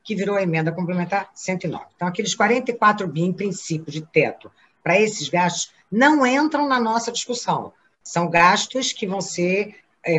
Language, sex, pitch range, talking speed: Portuguese, female, 175-235 Hz, 165 wpm